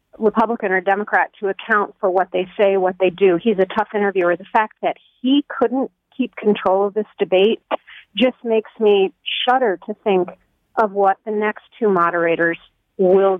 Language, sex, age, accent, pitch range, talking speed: English, female, 40-59, American, 190-220 Hz, 175 wpm